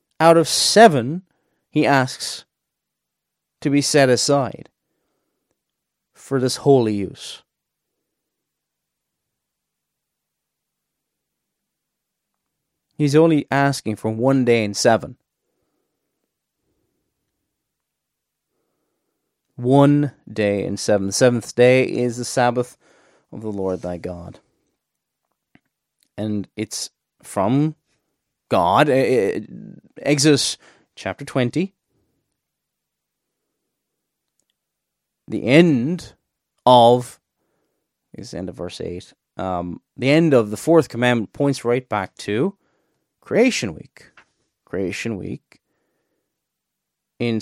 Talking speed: 85 wpm